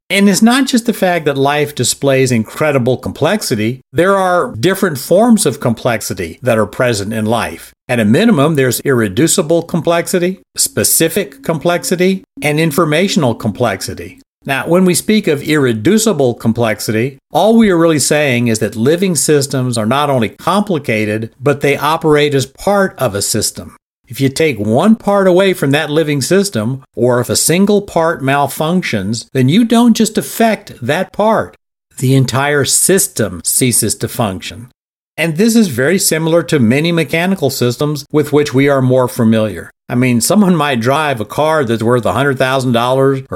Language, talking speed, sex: English, 160 wpm, male